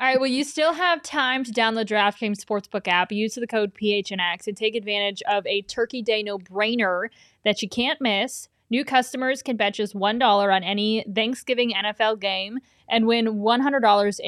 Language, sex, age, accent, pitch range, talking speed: English, female, 20-39, American, 205-250 Hz, 175 wpm